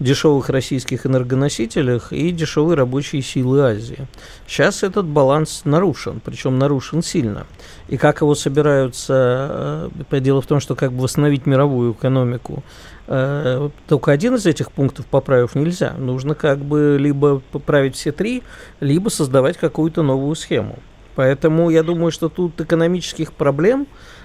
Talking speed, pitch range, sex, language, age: 135 wpm, 130-160 Hz, male, Russian, 50-69